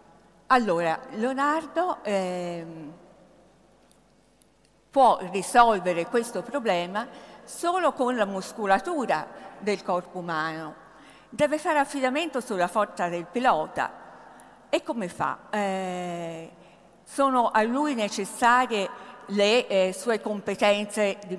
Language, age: Italian, 50-69